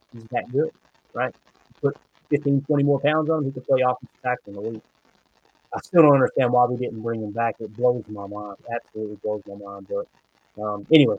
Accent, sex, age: American, male, 30-49